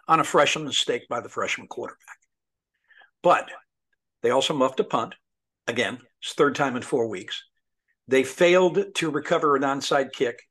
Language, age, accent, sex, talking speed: English, 60-79, American, male, 155 wpm